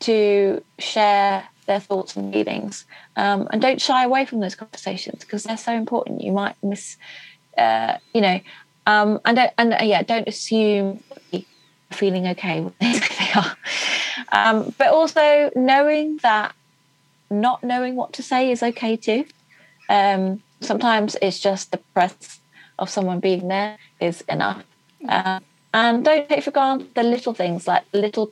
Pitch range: 190-235 Hz